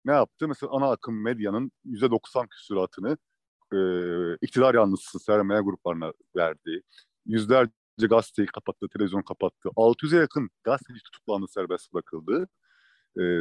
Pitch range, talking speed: 100-150 Hz, 115 wpm